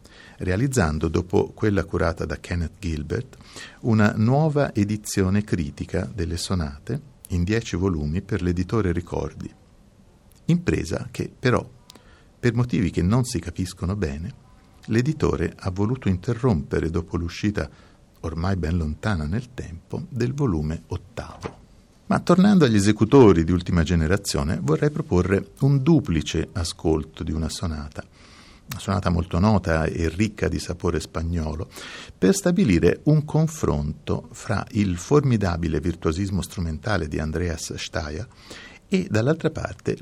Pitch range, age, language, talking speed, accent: 85-115 Hz, 50-69, Italian, 125 wpm, native